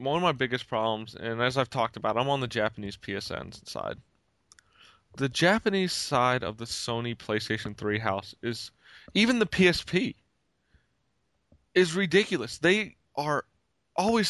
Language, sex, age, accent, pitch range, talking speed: English, male, 20-39, American, 115-175 Hz, 145 wpm